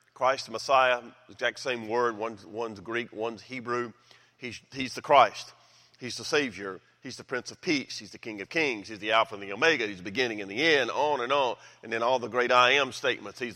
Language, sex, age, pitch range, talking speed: English, male, 40-59, 115-130 Hz, 230 wpm